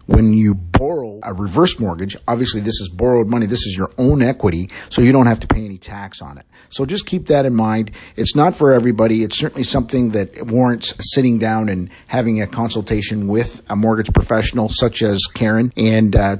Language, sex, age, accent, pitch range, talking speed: English, male, 50-69, American, 100-125 Hz, 205 wpm